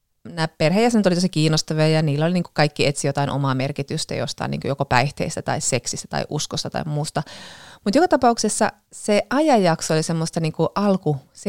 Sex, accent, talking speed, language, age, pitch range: female, native, 170 wpm, Finnish, 30-49, 145-180 Hz